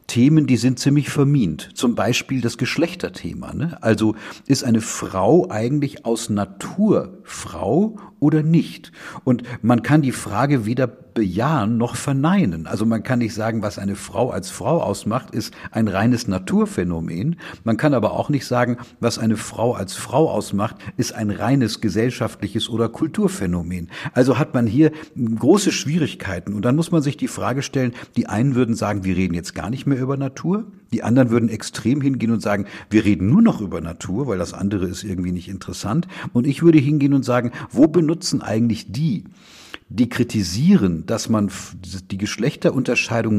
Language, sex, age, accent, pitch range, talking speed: German, male, 50-69, German, 105-140 Hz, 170 wpm